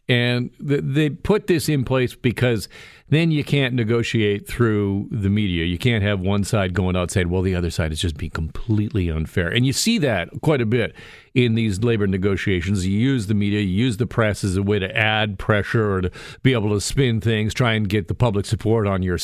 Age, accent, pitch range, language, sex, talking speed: 50-69, American, 95-130 Hz, English, male, 220 wpm